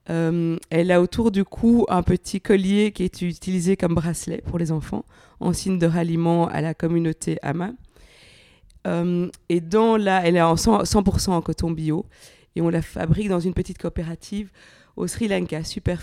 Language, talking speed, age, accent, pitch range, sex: French, 185 wpm, 20-39, French, 165-195 Hz, female